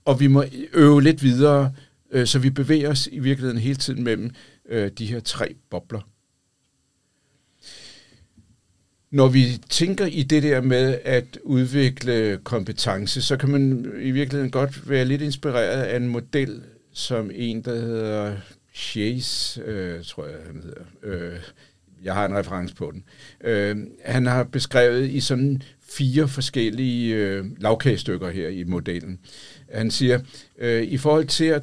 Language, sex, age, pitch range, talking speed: Danish, male, 60-79, 110-140 Hz, 140 wpm